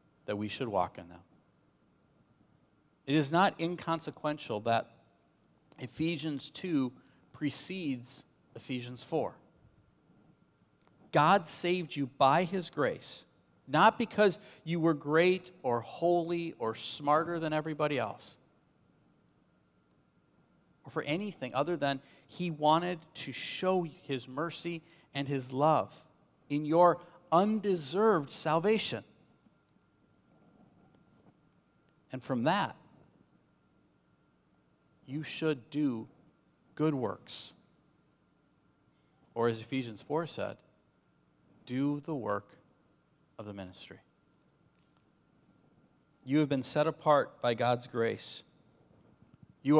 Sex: male